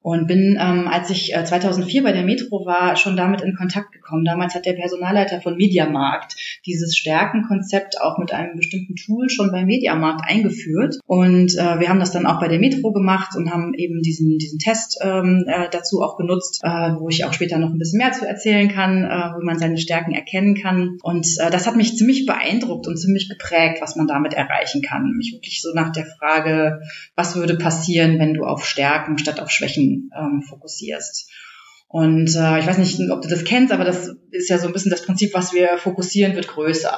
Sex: female